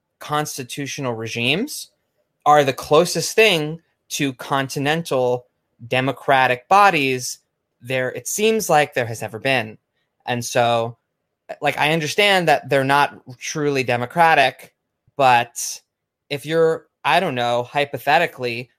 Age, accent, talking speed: 20-39, American, 110 wpm